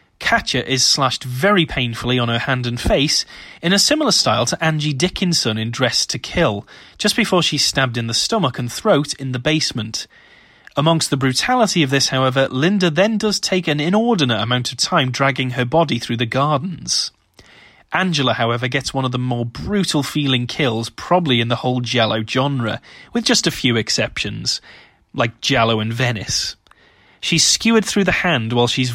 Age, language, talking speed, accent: 30-49, English, 175 wpm, British